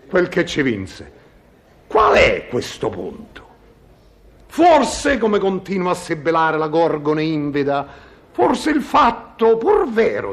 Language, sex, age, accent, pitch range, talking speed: Italian, male, 50-69, native, 180-260 Hz, 120 wpm